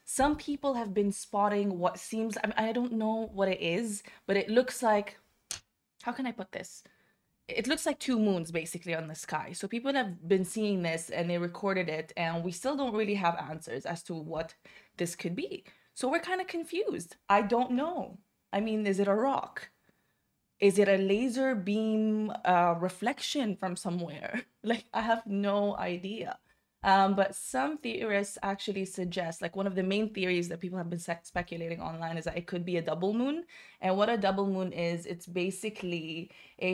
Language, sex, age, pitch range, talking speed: Arabic, female, 20-39, 175-220 Hz, 195 wpm